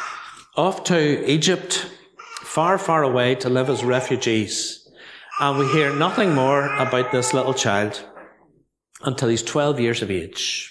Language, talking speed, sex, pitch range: English, 140 wpm, male, 120-160 Hz